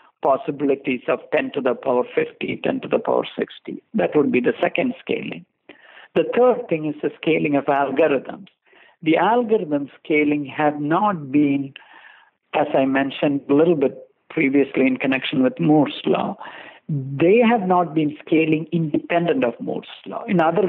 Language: English